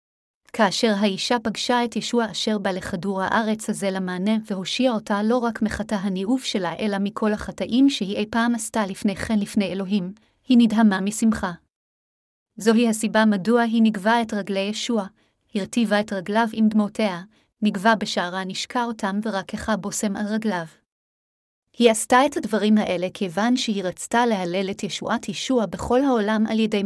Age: 30-49